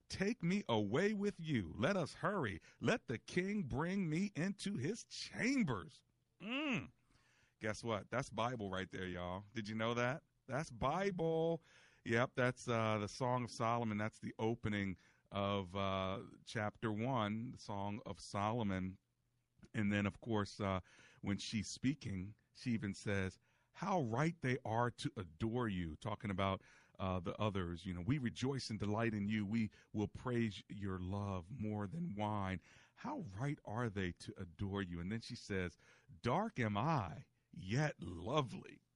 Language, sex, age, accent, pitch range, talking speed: English, male, 40-59, American, 105-150 Hz, 160 wpm